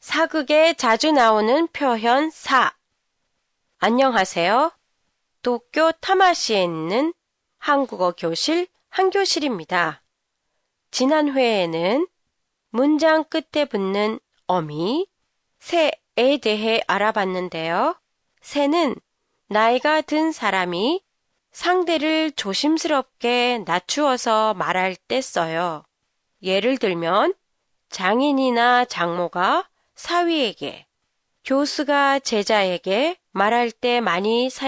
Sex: female